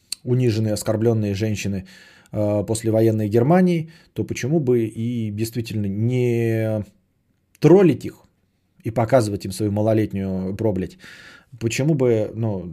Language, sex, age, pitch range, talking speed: Bulgarian, male, 20-39, 110-155 Hz, 115 wpm